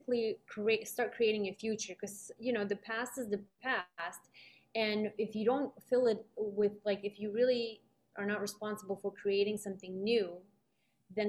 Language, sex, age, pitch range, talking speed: English, female, 20-39, 195-220 Hz, 170 wpm